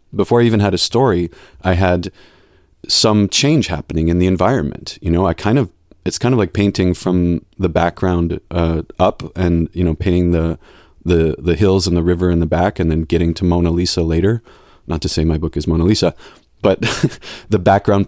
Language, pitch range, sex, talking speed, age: English, 85-100 Hz, male, 200 wpm, 30-49